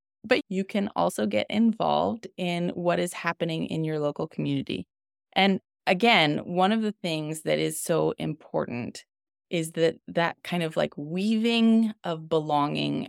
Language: English